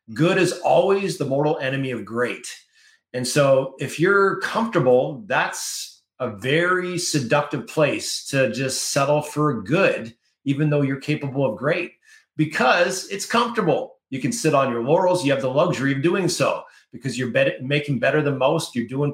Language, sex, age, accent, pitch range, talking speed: English, male, 30-49, American, 125-165 Hz, 165 wpm